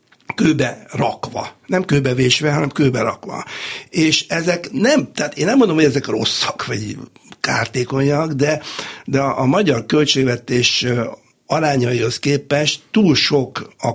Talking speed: 130 wpm